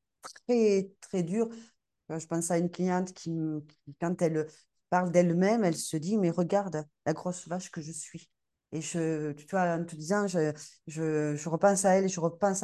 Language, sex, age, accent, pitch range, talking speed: French, female, 40-59, French, 165-200 Hz, 195 wpm